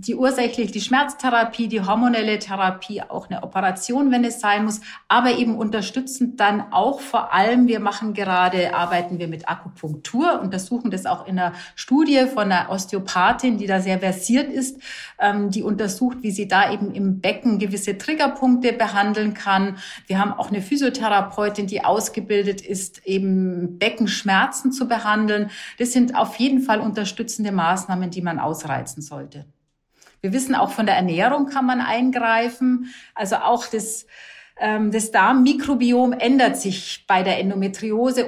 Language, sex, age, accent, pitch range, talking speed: German, female, 40-59, German, 185-235 Hz, 150 wpm